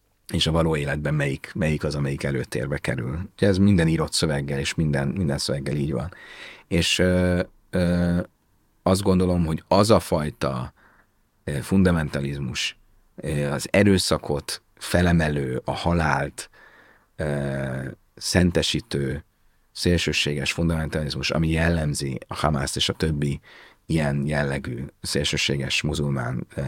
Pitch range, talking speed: 70-90 Hz, 105 wpm